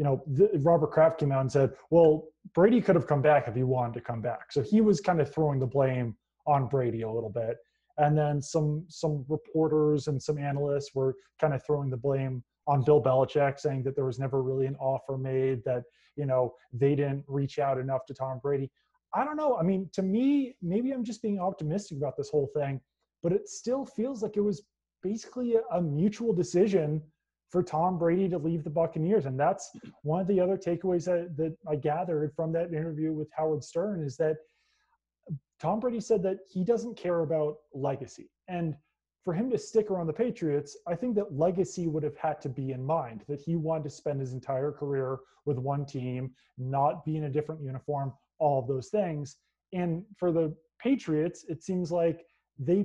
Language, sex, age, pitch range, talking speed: English, male, 20-39, 140-180 Hz, 205 wpm